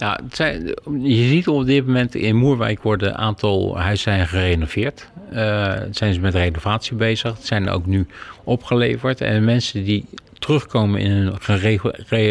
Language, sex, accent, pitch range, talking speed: Dutch, male, Dutch, 100-125 Hz, 155 wpm